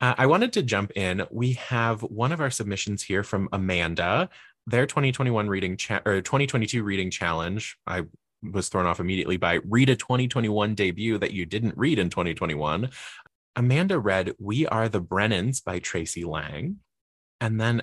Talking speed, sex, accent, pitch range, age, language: 165 wpm, male, American, 90-115 Hz, 20-39, English